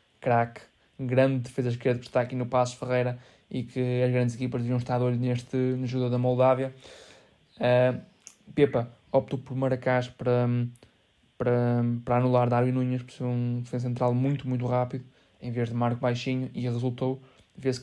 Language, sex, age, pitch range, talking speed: Portuguese, male, 20-39, 125-130 Hz, 165 wpm